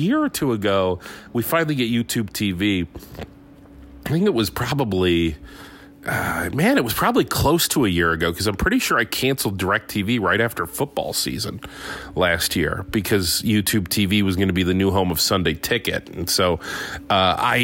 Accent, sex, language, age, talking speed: American, male, English, 40-59, 185 wpm